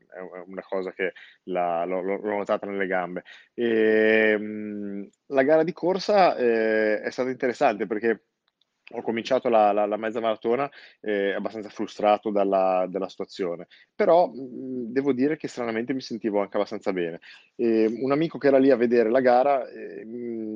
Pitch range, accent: 95-115 Hz, native